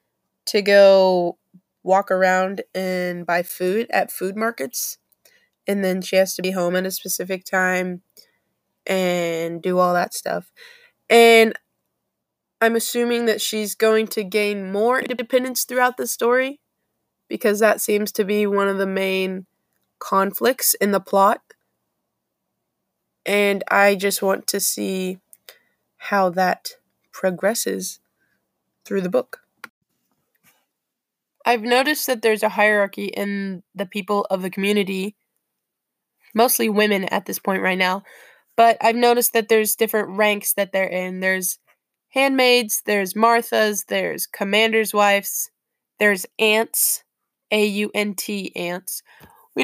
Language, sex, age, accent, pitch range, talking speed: English, female, 20-39, American, 195-230 Hz, 130 wpm